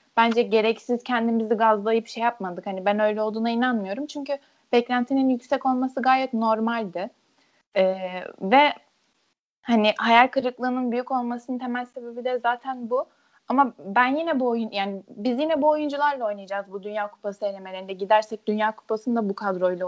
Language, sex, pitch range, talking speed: Turkish, female, 210-270 Hz, 150 wpm